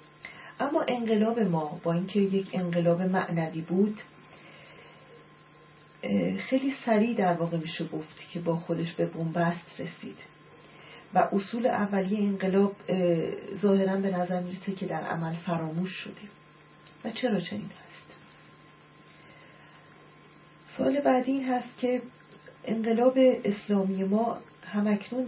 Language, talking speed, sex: Persian, 110 wpm, female